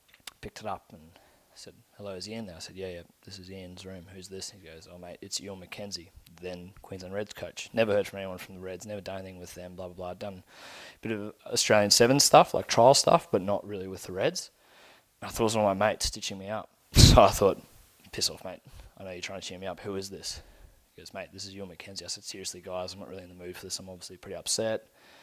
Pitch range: 95-110 Hz